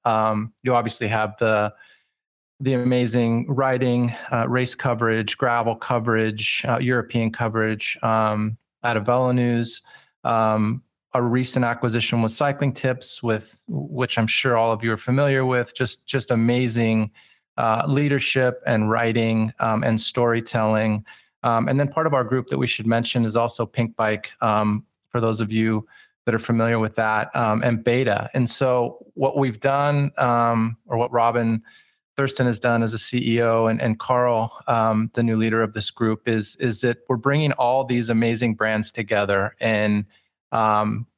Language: English